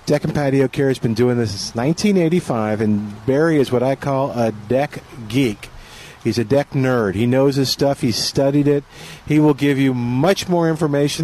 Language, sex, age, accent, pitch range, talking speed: English, male, 50-69, American, 115-145 Hz, 200 wpm